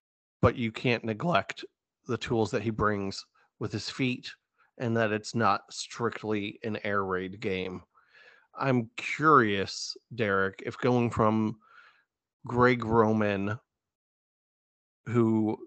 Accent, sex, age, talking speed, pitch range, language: American, male, 30-49, 115 wpm, 105-125 Hz, English